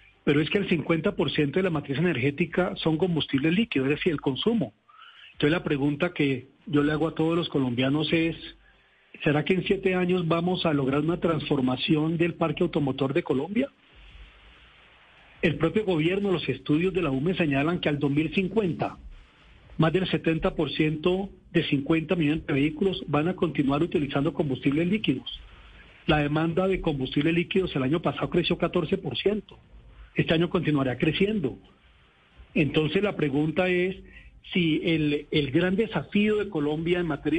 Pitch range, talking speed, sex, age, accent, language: 145-180 Hz, 155 wpm, male, 40-59, Colombian, Spanish